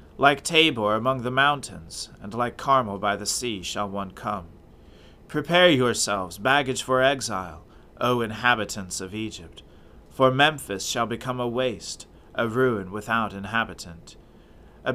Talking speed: 135 wpm